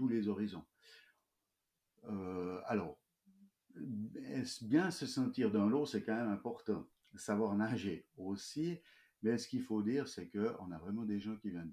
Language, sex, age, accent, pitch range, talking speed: French, male, 50-69, French, 85-110 Hz, 155 wpm